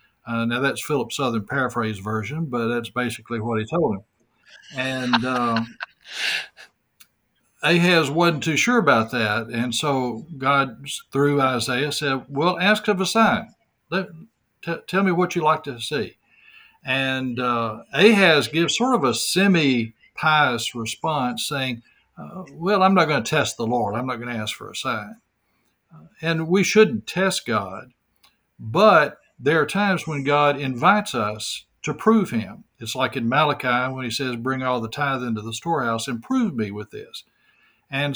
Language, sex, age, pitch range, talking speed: English, male, 60-79, 120-165 Hz, 165 wpm